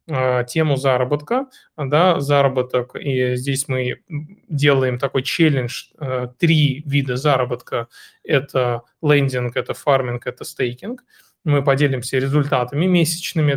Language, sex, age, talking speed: Russian, male, 20-39, 100 wpm